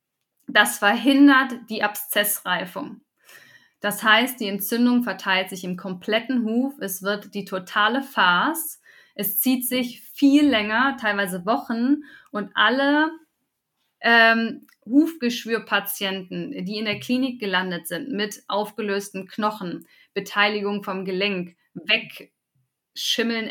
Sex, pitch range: female, 195-235 Hz